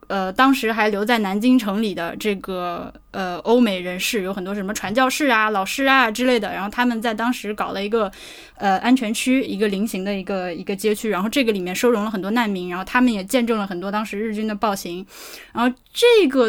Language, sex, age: Chinese, female, 10-29